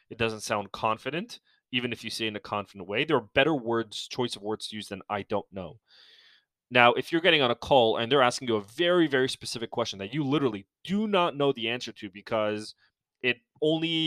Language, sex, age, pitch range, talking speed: English, male, 20-39, 110-135 Hz, 230 wpm